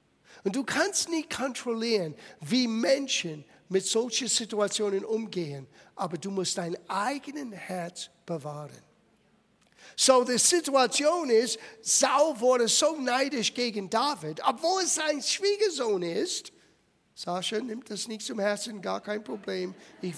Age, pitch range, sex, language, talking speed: 50-69, 190-280 Hz, male, German, 130 wpm